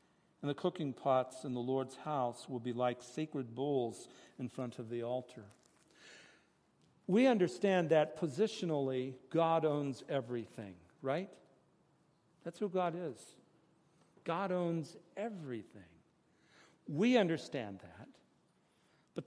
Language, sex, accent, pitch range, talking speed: English, male, American, 135-190 Hz, 115 wpm